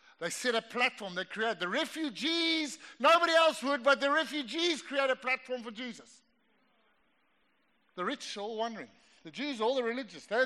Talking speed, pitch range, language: 180 wpm, 210-280 Hz, English